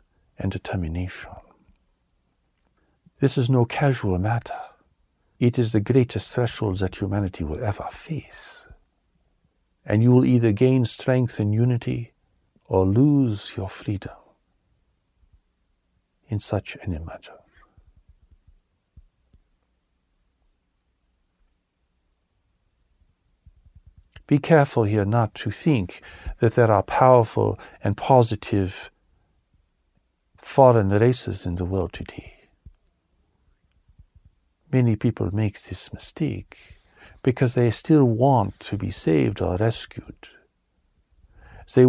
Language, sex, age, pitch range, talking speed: English, male, 60-79, 85-120 Hz, 95 wpm